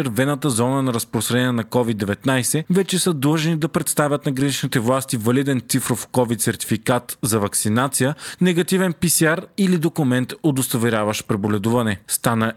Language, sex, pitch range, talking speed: Bulgarian, male, 115-150 Hz, 125 wpm